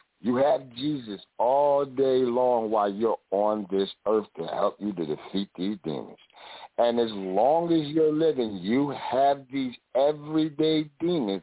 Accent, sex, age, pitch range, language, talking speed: American, male, 60-79, 100-140 Hz, English, 150 wpm